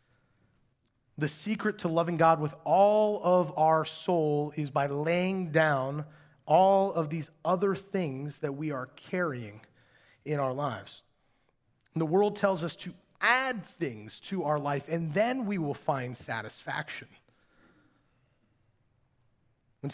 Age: 30-49